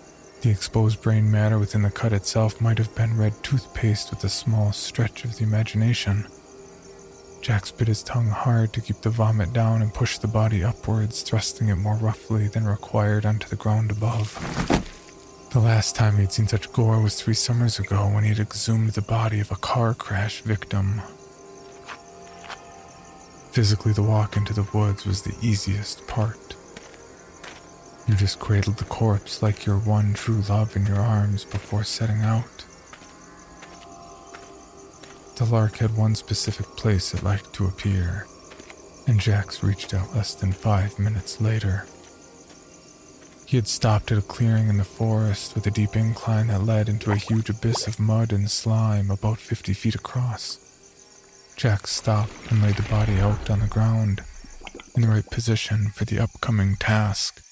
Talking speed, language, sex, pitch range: 165 wpm, English, male, 100-110 Hz